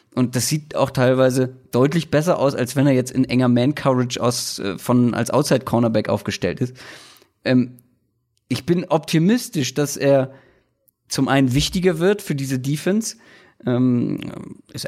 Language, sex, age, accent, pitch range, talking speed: German, male, 30-49, German, 125-150 Hz, 140 wpm